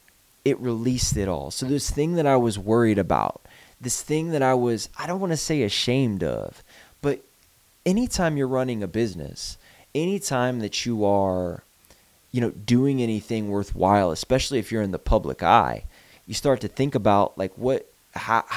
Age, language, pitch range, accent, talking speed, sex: 20-39, English, 95-125 Hz, American, 175 wpm, male